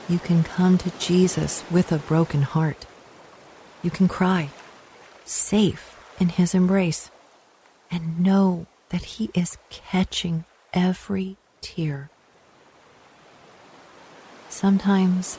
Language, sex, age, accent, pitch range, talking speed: English, female, 40-59, American, 160-185 Hz, 100 wpm